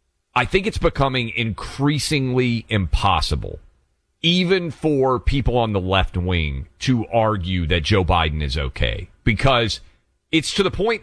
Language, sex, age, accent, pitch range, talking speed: English, male, 40-59, American, 95-135 Hz, 135 wpm